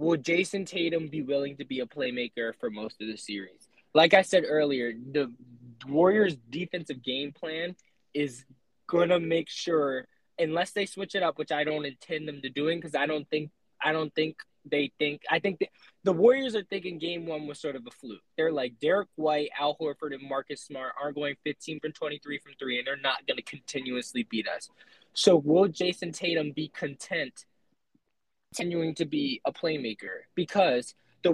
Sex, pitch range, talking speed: male, 135-170 Hz, 190 wpm